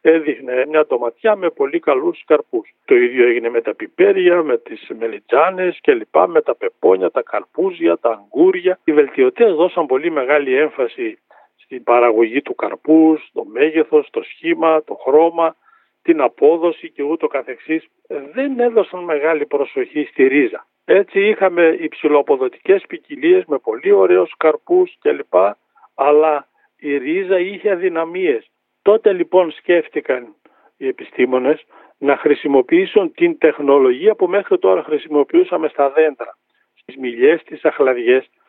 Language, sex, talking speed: Greek, male, 130 wpm